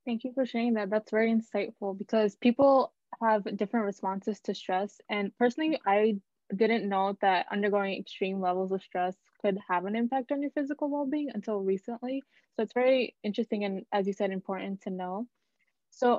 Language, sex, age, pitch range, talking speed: English, female, 20-39, 195-230 Hz, 180 wpm